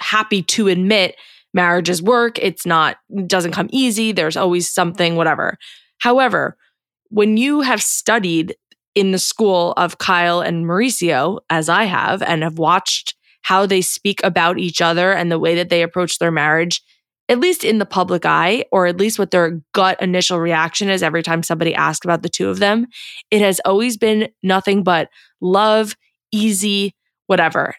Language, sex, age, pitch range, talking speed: English, female, 20-39, 175-220 Hz, 175 wpm